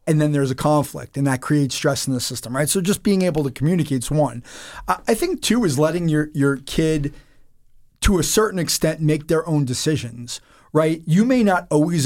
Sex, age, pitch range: male, 30-49, 140-175 Hz